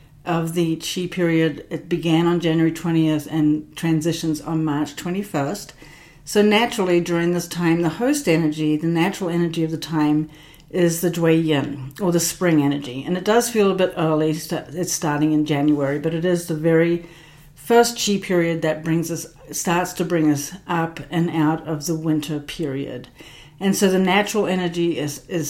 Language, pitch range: English, 155-185 Hz